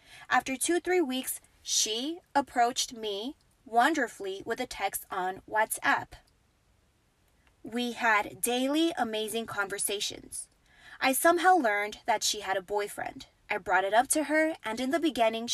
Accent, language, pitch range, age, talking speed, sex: American, English, 210-280 Hz, 20-39, 140 wpm, female